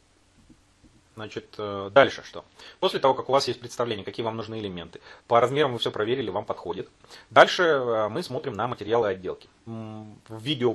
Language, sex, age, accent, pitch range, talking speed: Russian, male, 30-49, native, 100-125 Hz, 160 wpm